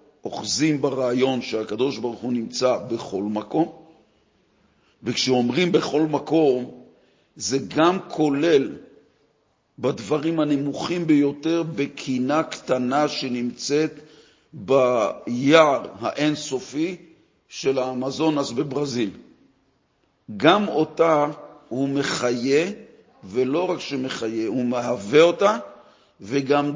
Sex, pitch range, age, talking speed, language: male, 125-160 Hz, 50-69, 85 wpm, Hebrew